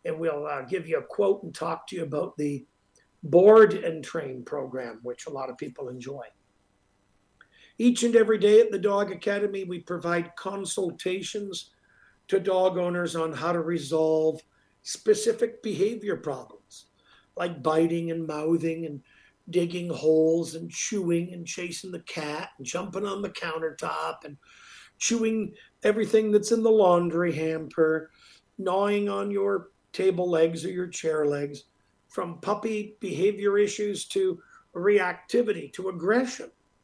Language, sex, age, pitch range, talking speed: English, male, 50-69, 160-210 Hz, 140 wpm